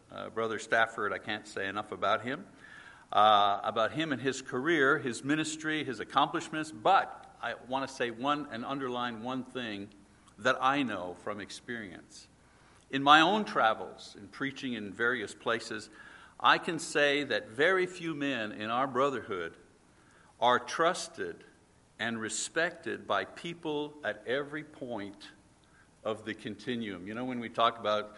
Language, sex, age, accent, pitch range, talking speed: English, male, 60-79, American, 110-140 Hz, 150 wpm